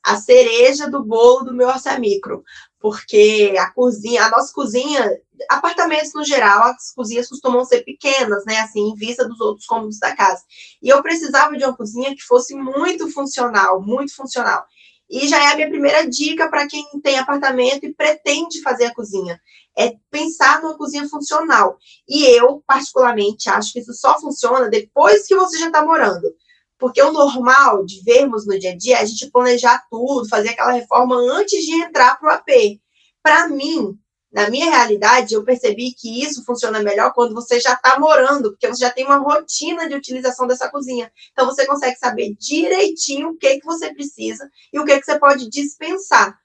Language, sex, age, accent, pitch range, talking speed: Portuguese, female, 20-39, Brazilian, 240-300 Hz, 185 wpm